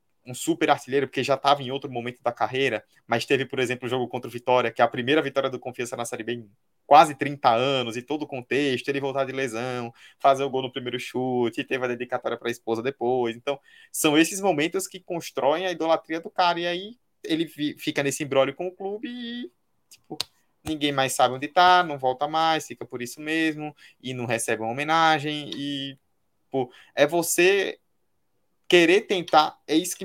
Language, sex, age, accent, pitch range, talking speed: Portuguese, male, 20-39, Brazilian, 125-160 Hz, 200 wpm